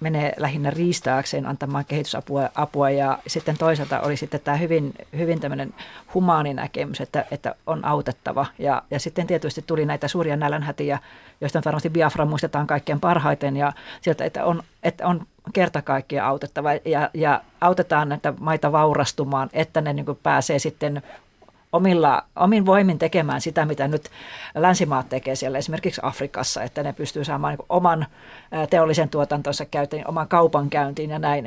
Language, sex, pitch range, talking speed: Finnish, female, 145-170 Hz, 150 wpm